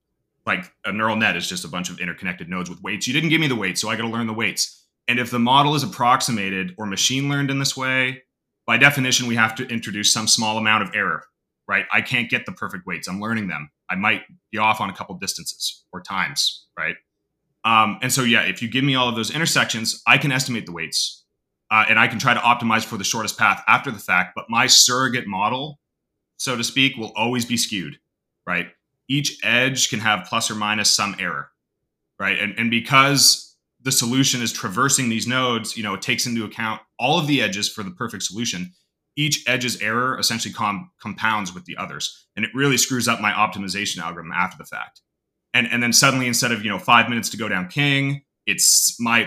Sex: male